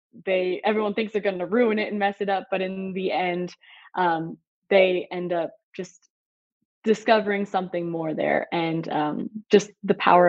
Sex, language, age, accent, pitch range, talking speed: female, English, 20-39, American, 175-205 Hz, 175 wpm